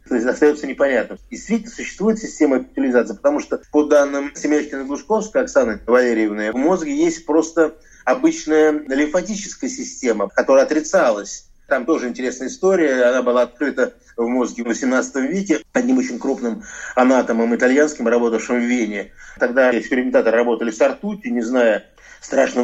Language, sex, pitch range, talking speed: Russian, male, 125-200 Hz, 145 wpm